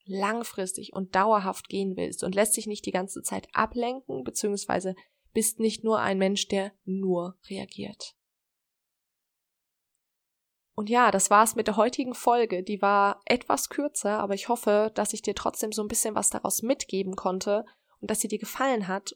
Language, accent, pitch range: German, German, 205-245 Hz